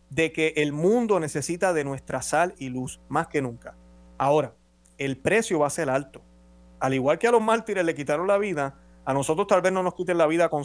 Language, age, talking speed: Spanish, 30-49, 225 wpm